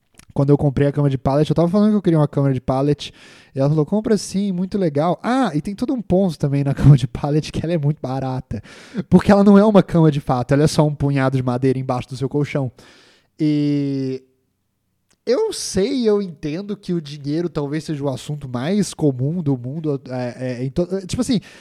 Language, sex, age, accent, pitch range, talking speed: Portuguese, male, 20-39, Brazilian, 135-190 Hz, 215 wpm